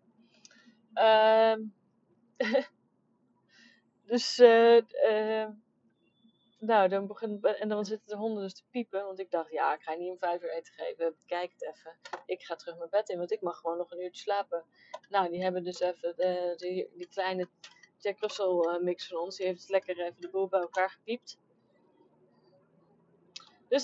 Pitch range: 185-275 Hz